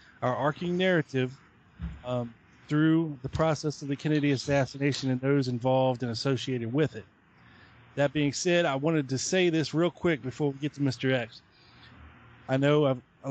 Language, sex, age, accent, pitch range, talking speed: English, male, 30-49, American, 130-150 Hz, 165 wpm